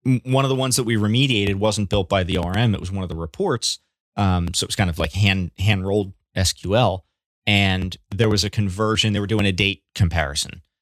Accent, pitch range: American, 90-110 Hz